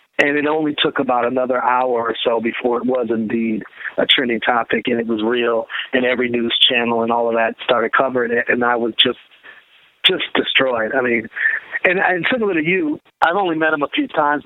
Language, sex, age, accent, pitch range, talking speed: English, male, 40-59, American, 120-150 Hz, 210 wpm